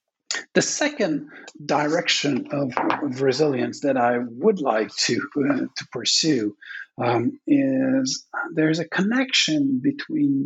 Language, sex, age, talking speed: English, male, 50-69, 110 wpm